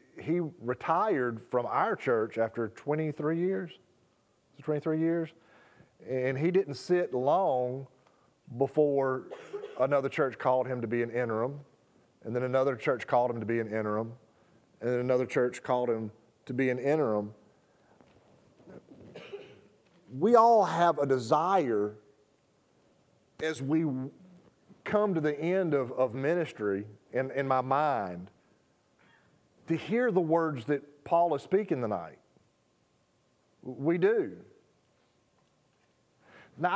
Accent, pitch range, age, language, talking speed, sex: American, 125-165 Hz, 40-59, English, 120 wpm, male